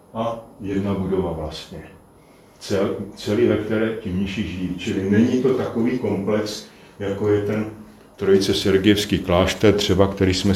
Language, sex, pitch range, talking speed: Slovak, male, 95-115 Hz, 140 wpm